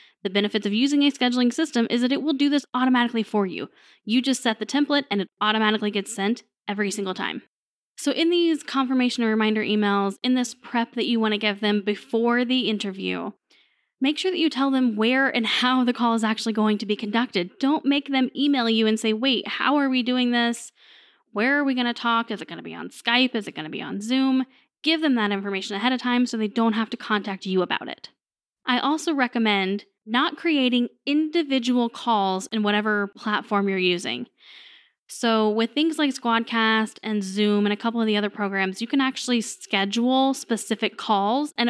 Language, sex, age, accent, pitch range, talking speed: English, female, 10-29, American, 210-265 Hz, 210 wpm